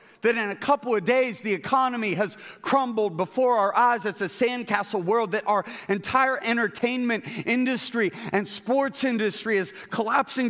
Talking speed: 155 wpm